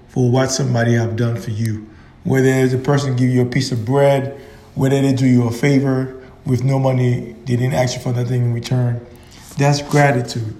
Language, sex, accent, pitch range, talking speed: English, male, American, 125-155 Hz, 205 wpm